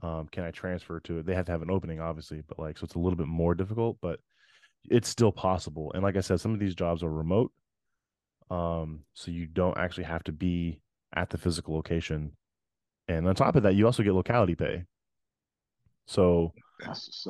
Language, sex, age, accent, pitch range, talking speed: English, male, 20-39, American, 85-100 Hz, 210 wpm